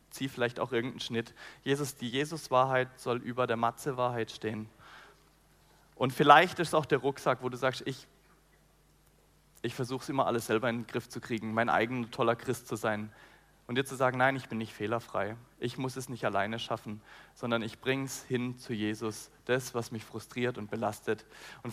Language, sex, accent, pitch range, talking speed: German, male, German, 115-140 Hz, 195 wpm